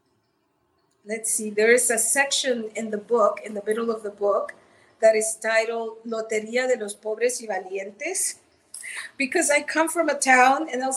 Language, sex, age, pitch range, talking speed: English, female, 40-59, 220-265 Hz, 175 wpm